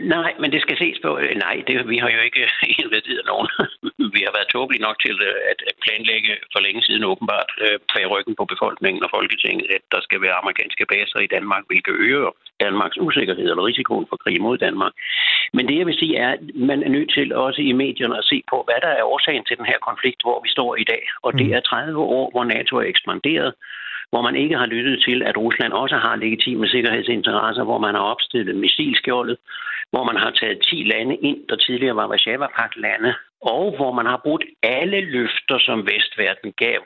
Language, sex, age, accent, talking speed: Danish, male, 60-79, native, 210 wpm